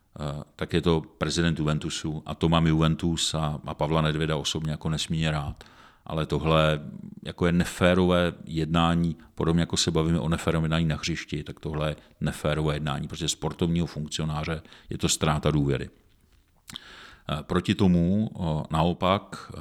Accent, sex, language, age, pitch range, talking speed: native, male, Czech, 50-69, 75-85 Hz, 140 wpm